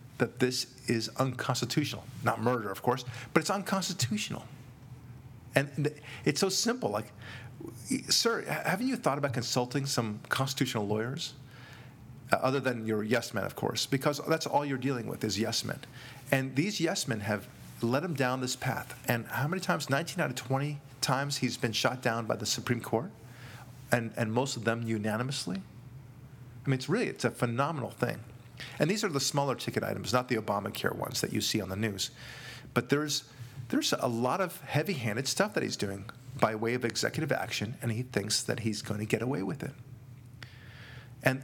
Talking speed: 185 wpm